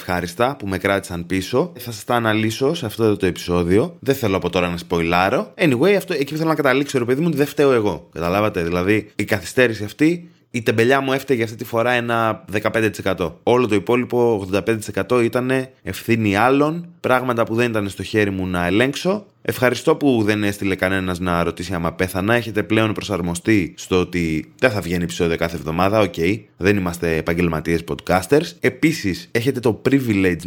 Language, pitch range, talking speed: Greek, 90-120 Hz, 180 wpm